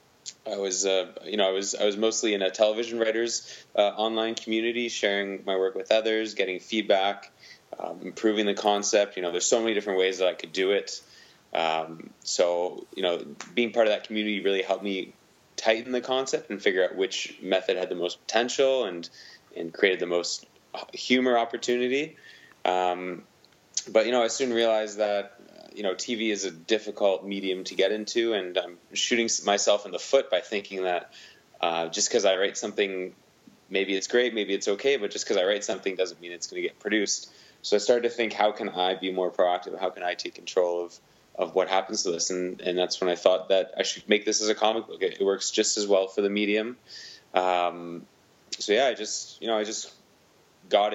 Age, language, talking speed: 20-39, English, 210 wpm